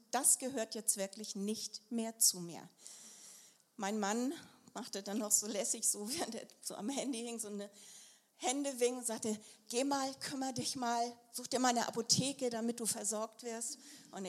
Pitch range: 215-270 Hz